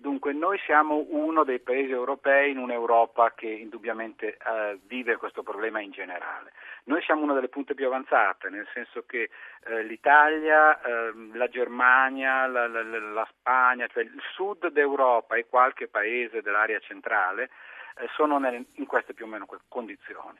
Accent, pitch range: native, 115-150 Hz